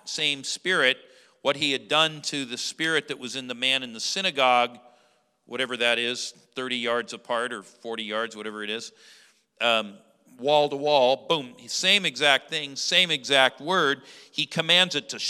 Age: 50-69